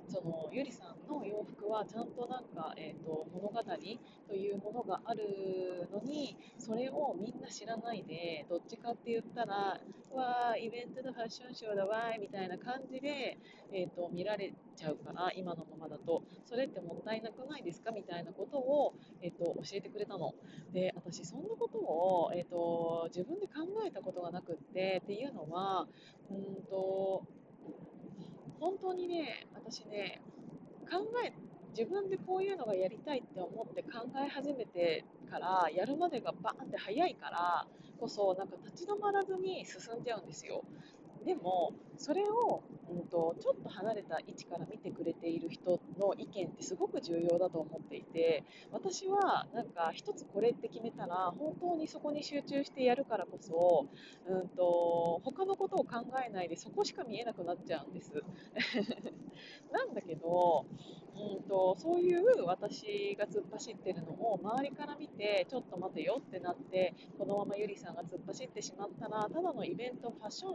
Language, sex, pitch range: Japanese, female, 180-270 Hz